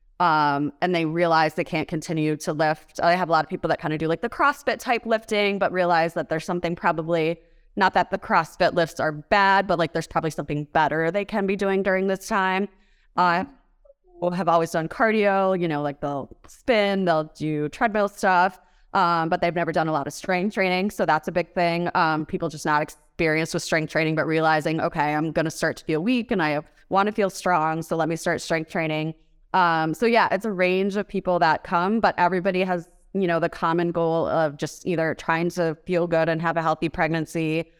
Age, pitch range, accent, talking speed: 20-39, 160-185 Hz, American, 215 wpm